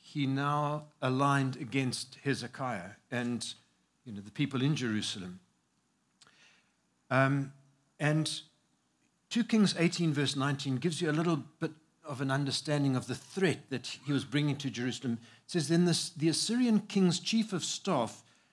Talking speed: 135 wpm